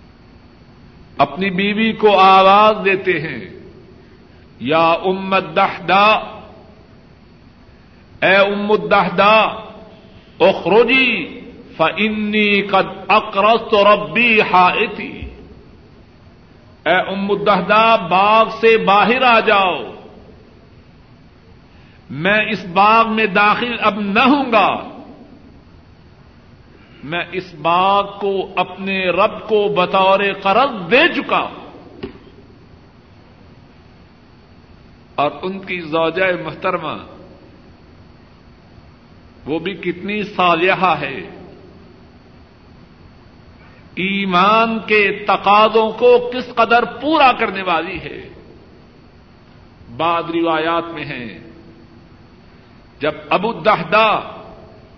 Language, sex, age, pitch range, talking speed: Urdu, male, 60-79, 175-215 Hz, 80 wpm